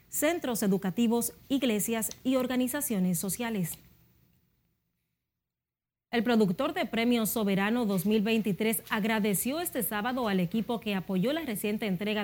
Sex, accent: female, American